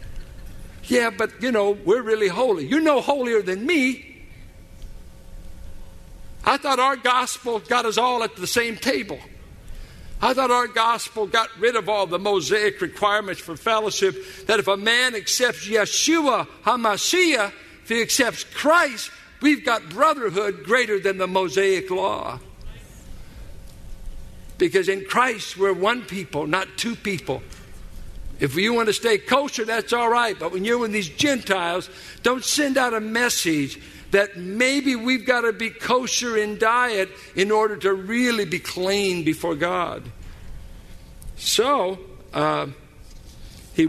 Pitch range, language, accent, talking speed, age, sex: 170-250 Hz, English, American, 140 wpm, 60-79, male